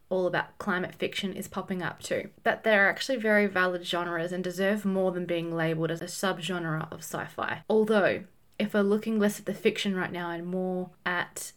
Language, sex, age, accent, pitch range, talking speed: English, female, 20-39, Australian, 180-225 Hz, 200 wpm